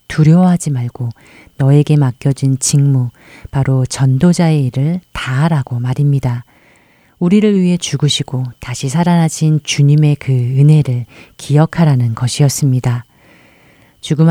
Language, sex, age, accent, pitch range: Korean, female, 40-59, native, 130-160 Hz